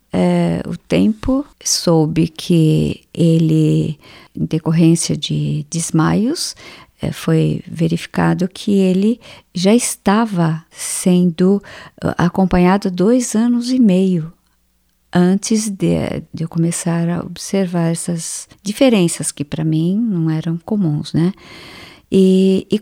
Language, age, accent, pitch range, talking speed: Portuguese, 50-69, Brazilian, 165-210 Hz, 110 wpm